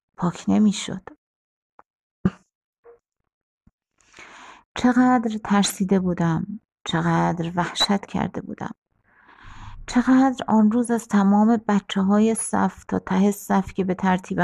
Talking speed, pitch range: 95 wpm, 160-200 Hz